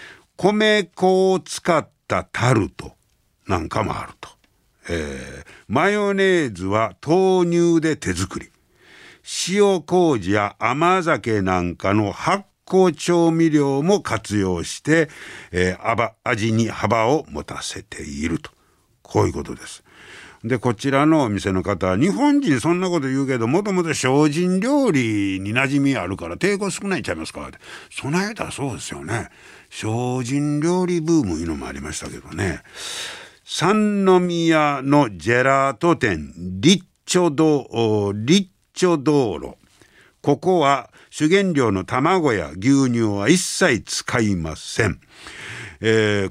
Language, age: Japanese, 60-79